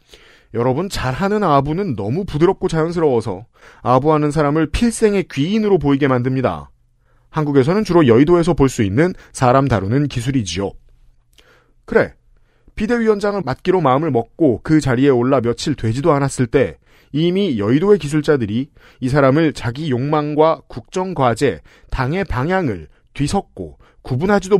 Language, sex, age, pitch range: Korean, male, 40-59, 125-185 Hz